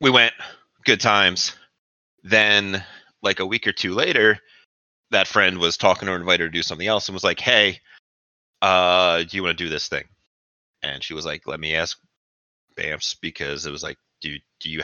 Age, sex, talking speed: 30-49, male, 200 wpm